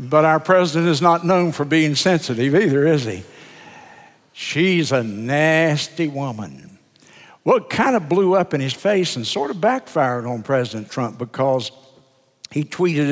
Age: 60-79